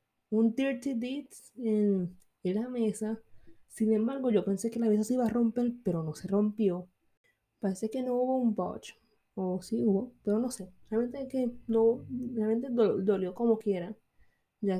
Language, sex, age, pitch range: Spanish, female, 20-39, 190-230 Hz